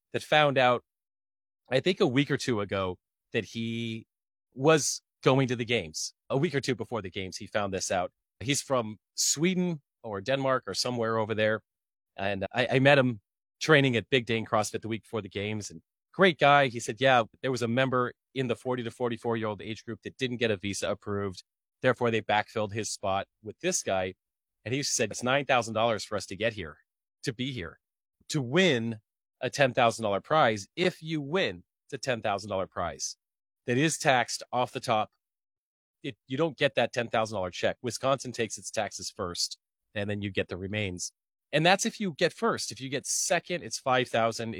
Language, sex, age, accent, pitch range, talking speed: English, male, 30-49, American, 105-135 Hz, 195 wpm